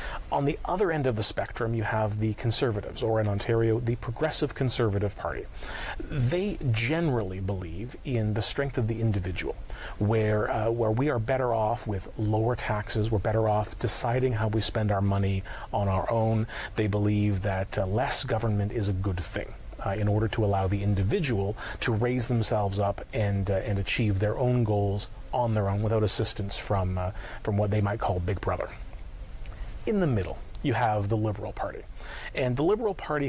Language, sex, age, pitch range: English, male, 40-59, 100-120 Hz